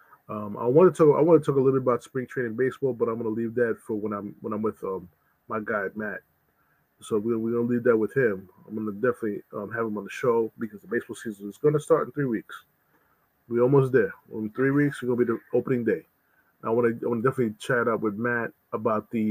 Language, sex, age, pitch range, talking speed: English, male, 20-39, 110-130 Hz, 280 wpm